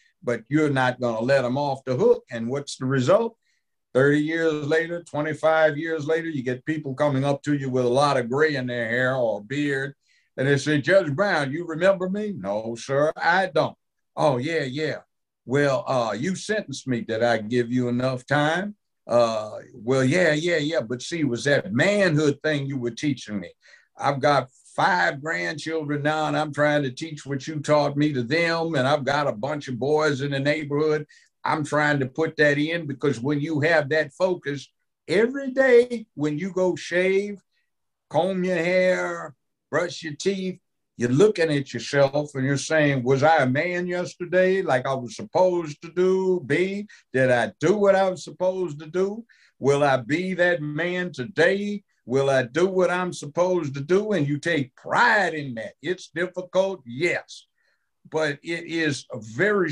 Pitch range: 140-175 Hz